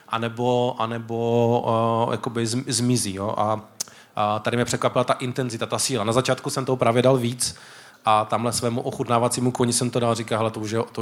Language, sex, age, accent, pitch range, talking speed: Czech, male, 20-39, native, 120-135 Hz, 175 wpm